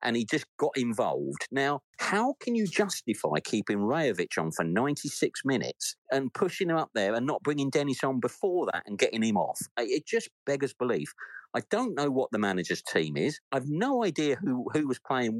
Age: 50-69